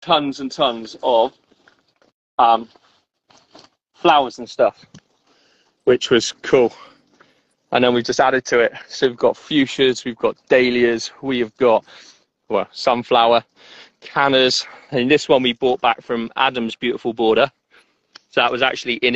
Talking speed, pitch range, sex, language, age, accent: 140 wpm, 120-145 Hz, male, English, 30-49, British